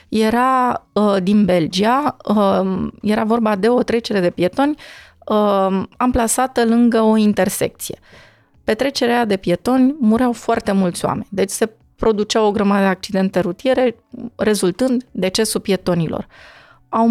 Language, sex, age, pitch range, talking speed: Romanian, female, 20-39, 195-255 Hz, 130 wpm